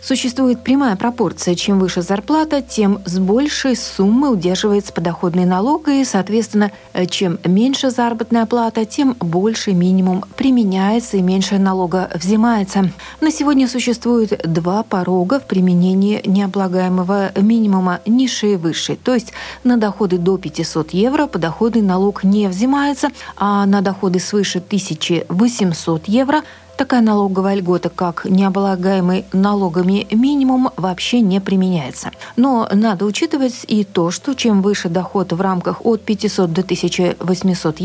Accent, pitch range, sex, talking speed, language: native, 185-235 Hz, female, 130 wpm, Russian